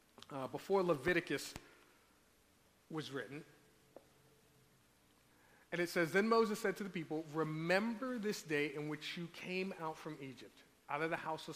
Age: 40-59